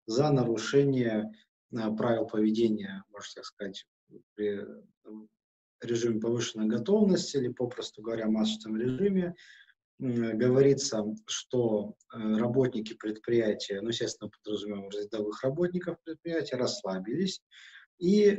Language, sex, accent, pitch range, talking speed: Russian, male, native, 110-135 Hz, 90 wpm